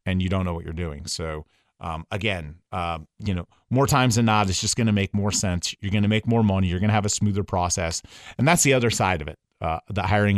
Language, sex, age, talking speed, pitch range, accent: English, male, 30-49, 255 wpm, 95-115 Hz, American